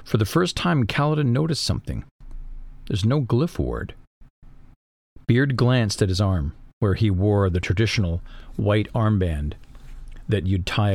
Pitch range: 90-120 Hz